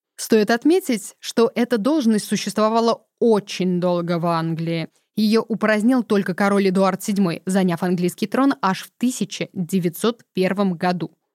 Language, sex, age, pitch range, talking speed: Russian, female, 20-39, 180-235 Hz, 120 wpm